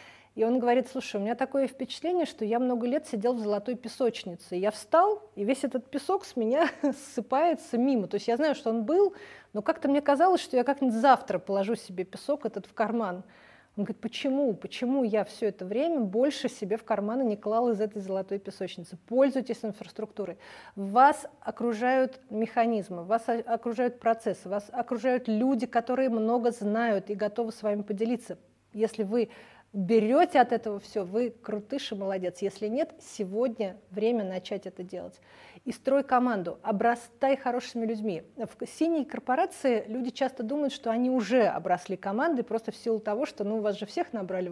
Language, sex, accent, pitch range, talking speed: Russian, female, native, 205-250 Hz, 175 wpm